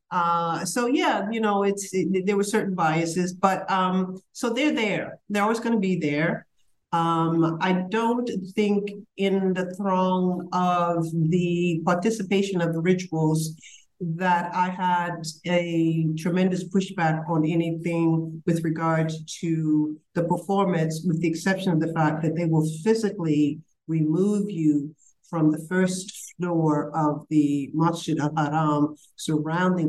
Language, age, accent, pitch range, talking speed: English, 50-69, American, 155-185 Hz, 140 wpm